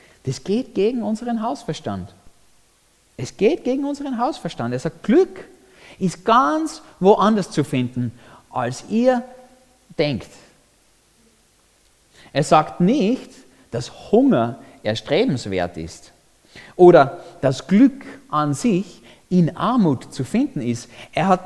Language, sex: German, male